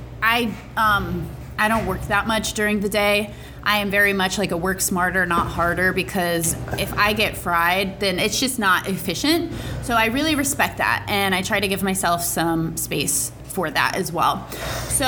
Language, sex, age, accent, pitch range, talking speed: English, female, 20-39, American, 170-215 Hz, 190 wpm